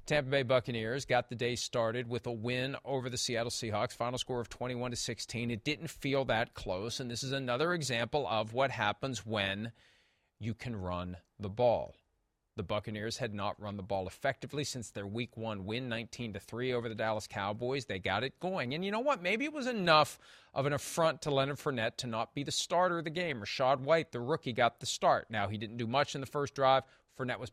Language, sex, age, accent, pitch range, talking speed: English, male, 40-59, American, 105-135 Hz, 215 wpm